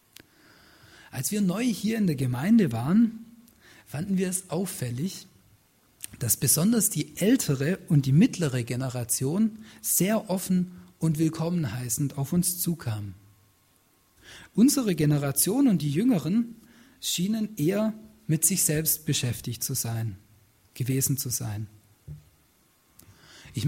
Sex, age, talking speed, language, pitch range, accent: male, 40-59, 115 wpm, German, 130-205 Hz, German